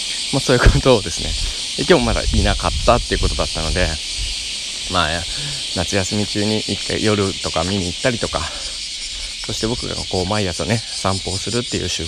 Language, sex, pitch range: Japanese, male, 85-120 Hz